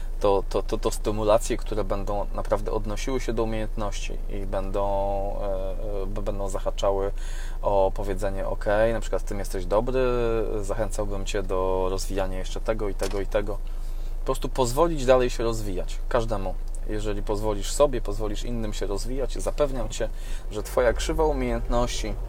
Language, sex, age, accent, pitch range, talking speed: Polish, male, 20-39, native, 100-120 Hz, 150 wpm